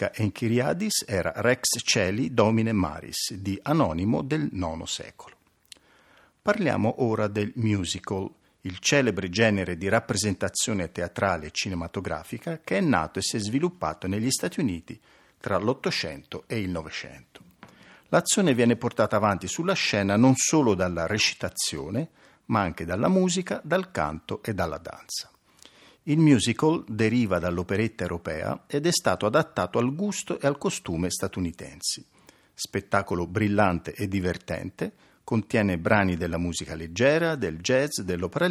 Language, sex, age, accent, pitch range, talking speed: Italian, male, 50-69, native, 90-130 Hz, 130 wpm